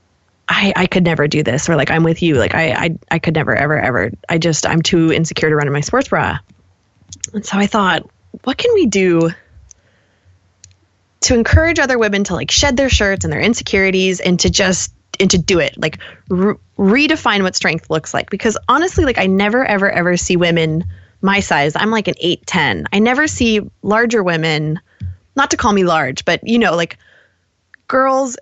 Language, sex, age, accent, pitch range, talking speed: English, female, 20-39, American, 160-215 Hz, 200 wpm